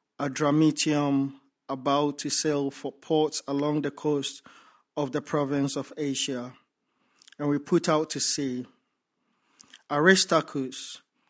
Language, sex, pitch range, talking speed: English, male, 140-155 Hz, 115 wpm